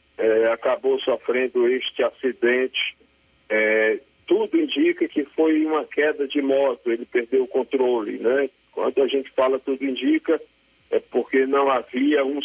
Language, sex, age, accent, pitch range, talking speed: Portuguese, male, 50-69, Brazilian, 120-160 Hz, 135 wpm